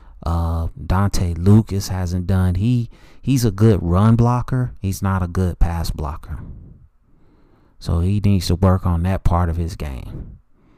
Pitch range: 85-100 Hz